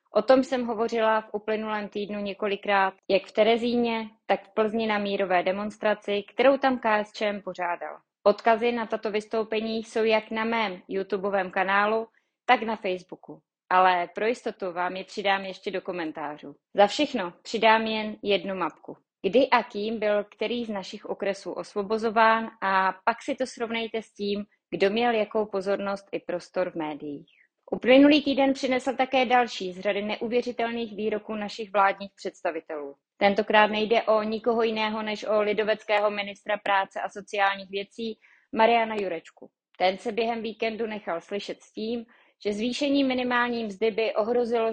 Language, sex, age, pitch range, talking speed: Czech, female, 20-39, 195-225 Hz, 155 wpm